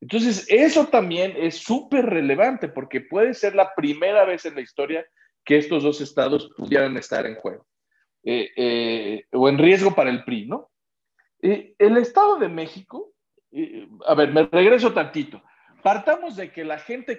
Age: 50-69